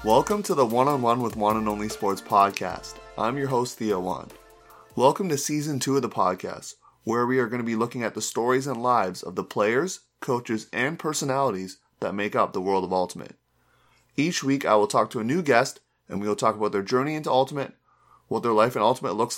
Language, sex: English, male